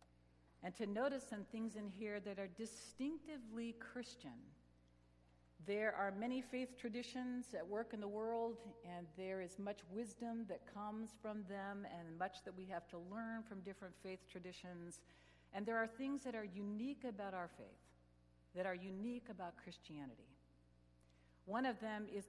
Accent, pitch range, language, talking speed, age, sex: American, 170-225 Hz, English, 160 wpm, 60-79, female